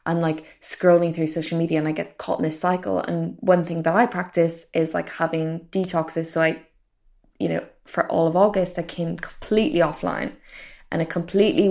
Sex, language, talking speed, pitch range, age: female, English, 195 wpm, 165-190 Hz, 10-29